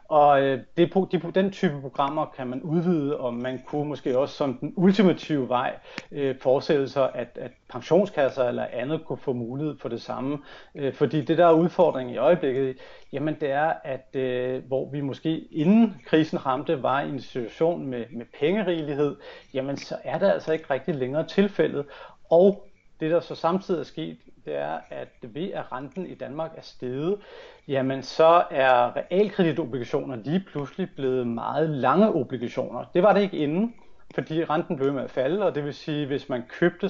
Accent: native